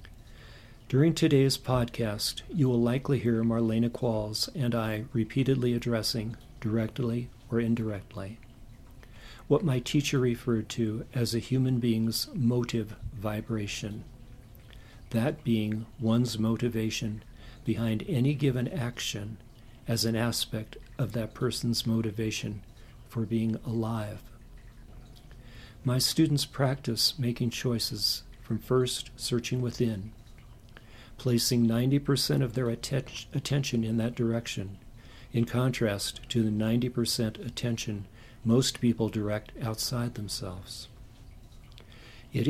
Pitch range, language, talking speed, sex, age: 110-125 Hz, English, 105 wpm, male, 50-69